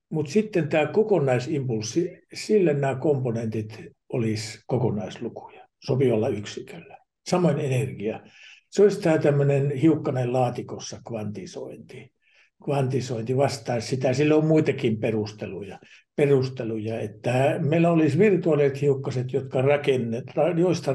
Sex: male